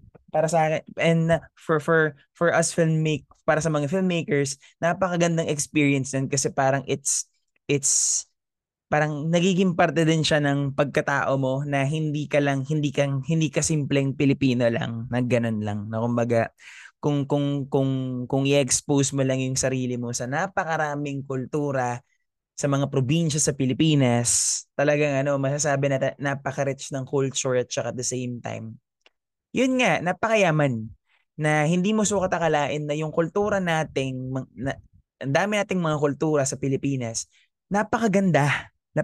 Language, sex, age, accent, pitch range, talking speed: Filipino, male, 20-39, native, 135-160 Hz, 150 wpm